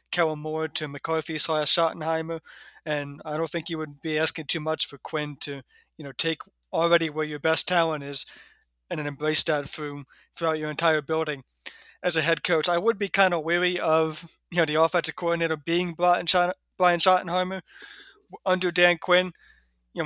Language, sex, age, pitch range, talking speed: English, male, 20-39, 150-170 Hz, 185 wpm